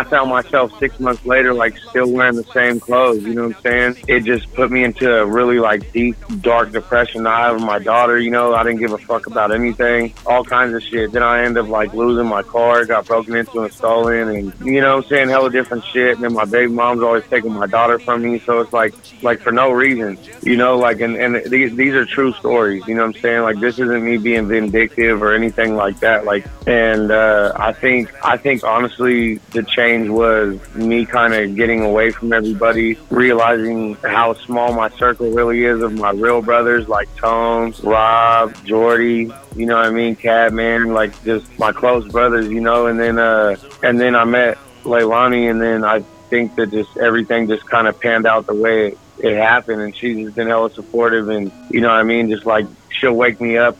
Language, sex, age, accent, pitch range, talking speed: English, male, 30-49, American, 110-120 Hz, 220 wpm